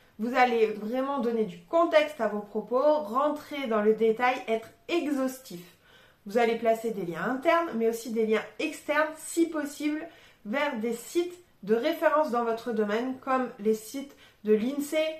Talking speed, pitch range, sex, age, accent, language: 160 wpm, 225-275 Hz, female, 20-39, French, French